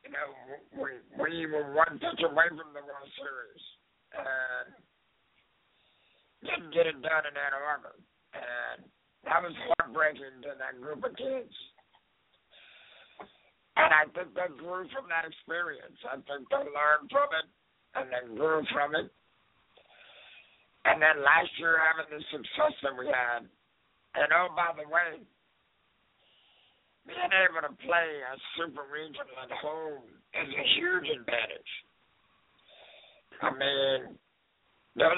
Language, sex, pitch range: English, male, 150-180 Hz